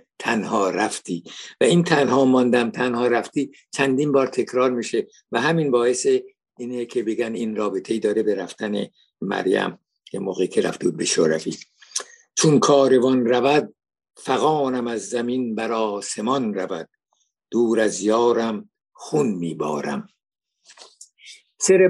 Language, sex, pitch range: Persian, male, 110-140 Hz